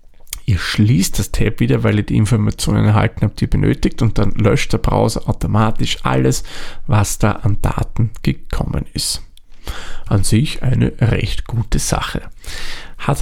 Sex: male